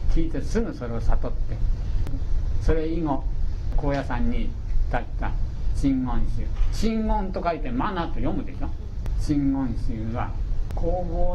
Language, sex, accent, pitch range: Japanese, male, native, 100-130 Hz